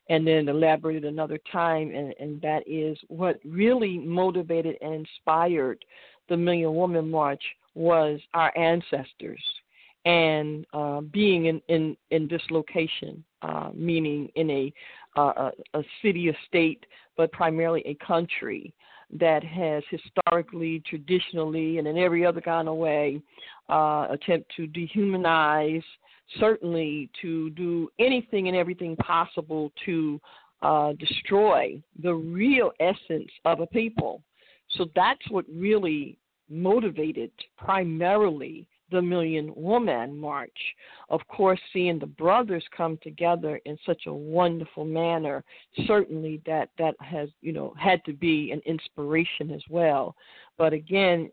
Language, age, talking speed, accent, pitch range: English, 50-69, 125 wpm, American, 155-180 Hz